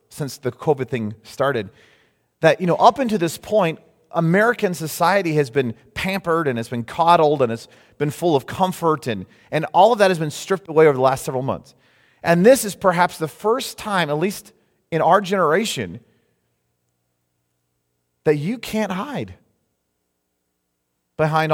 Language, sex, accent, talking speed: English, male, American, 160 wpm